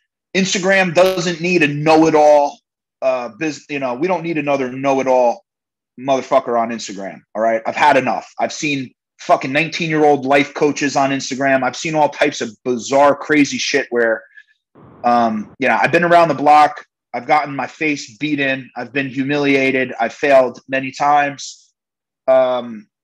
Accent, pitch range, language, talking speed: American, 130-160 Hz, English, 165 wpm